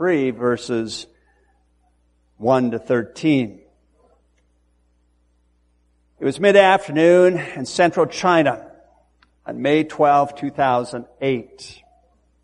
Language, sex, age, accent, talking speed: English, male, 50-69, American, 70 wpm